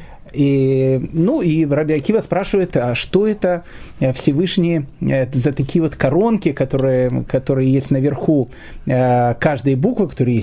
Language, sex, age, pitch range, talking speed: Russian, male, 30-49, 140-195 Hz, 125 wpm